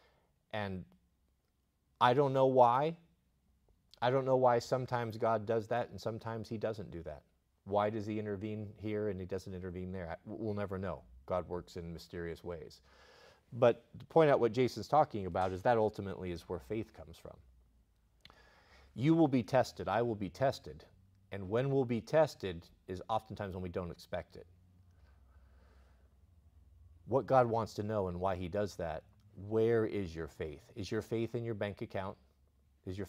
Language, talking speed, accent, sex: English, 175 wpm, American, male